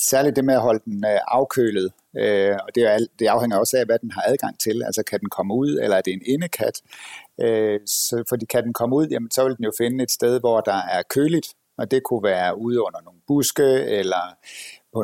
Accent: native